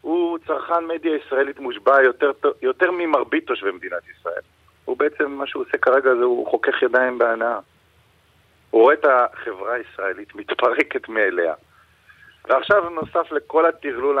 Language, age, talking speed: Hebrew, 50-69, 140 wpm